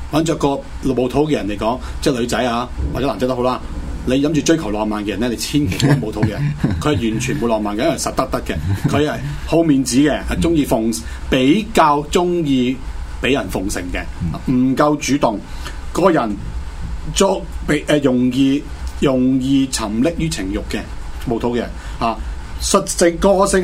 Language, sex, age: Chinese, male, 30-49